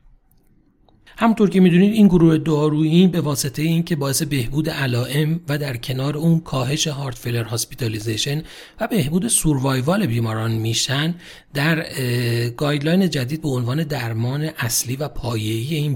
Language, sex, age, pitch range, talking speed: Persian, male, 40-59, 125-170 Hz, 135 wpm